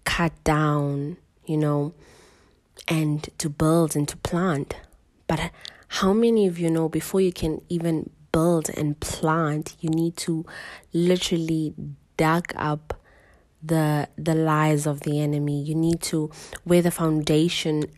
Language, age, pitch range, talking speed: English, 20-39, 150-165 Hz, 135 wpm